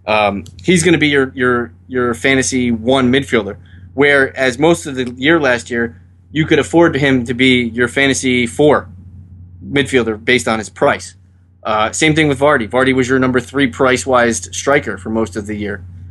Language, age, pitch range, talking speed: English, 20-39, 105-130 Hz, 185 wpm